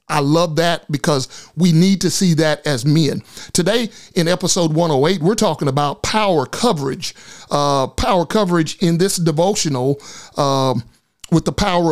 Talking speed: 150 wpm